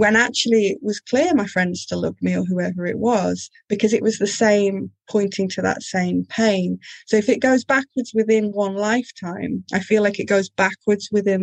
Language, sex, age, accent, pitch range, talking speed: English, female, 30-49, British, 185-215 Hz, 205 wpm